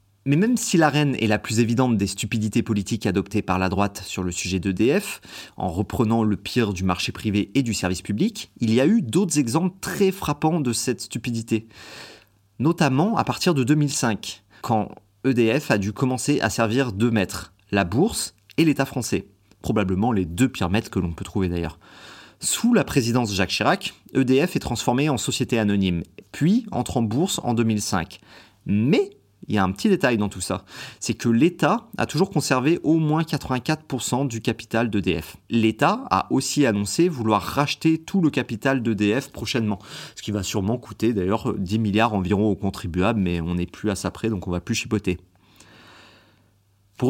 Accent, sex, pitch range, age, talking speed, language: French, male, 100-140 Hz, 30-49, 185 wpm, French